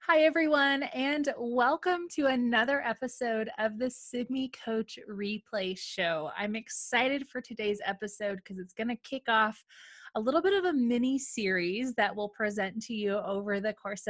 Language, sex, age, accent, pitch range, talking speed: English, female, 20-39, American, 205-255 Hz, 165 wpm